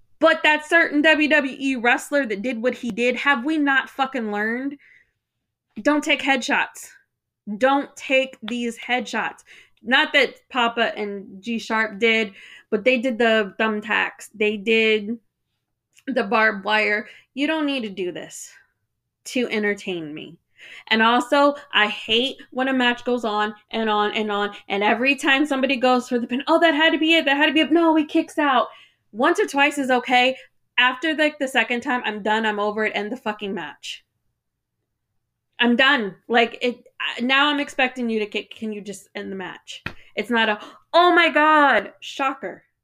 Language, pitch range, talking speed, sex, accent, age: English, 210-270 Hz, 180 wpm, female, American, 20-39